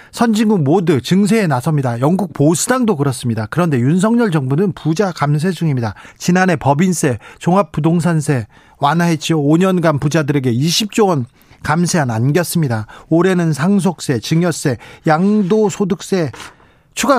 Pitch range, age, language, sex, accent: 140-190 Hz, 40-59, Korean, male, native